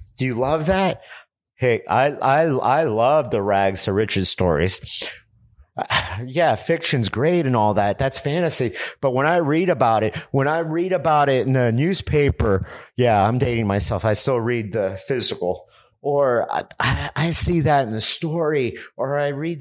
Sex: male